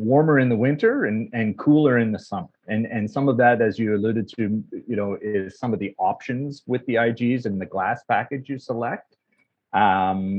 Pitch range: 105-125 Hz